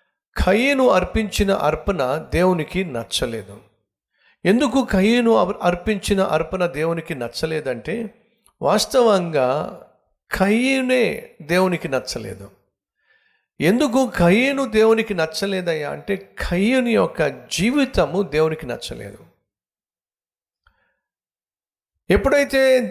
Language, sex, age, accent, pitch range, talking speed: Telugu, male, 50-69, native, 140-220 Hz, 70 wpm